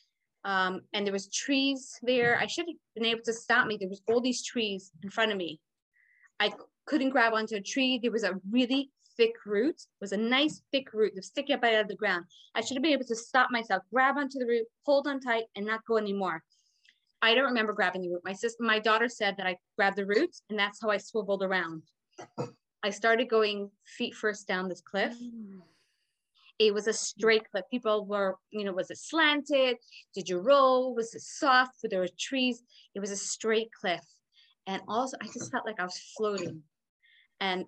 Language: English